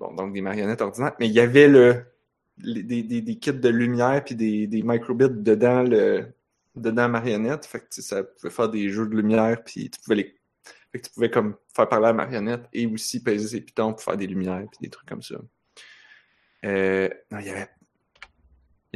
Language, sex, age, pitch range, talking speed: French, male, 20-39, 115-145 Hz, 210 wpm